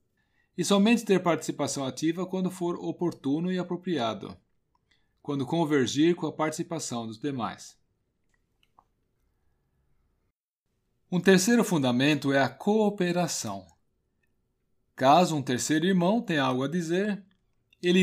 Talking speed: 105 wpm